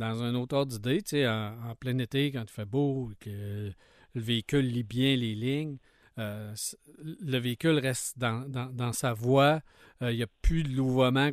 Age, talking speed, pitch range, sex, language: 50-69, 195 wpm, 130-160 Hz, male, French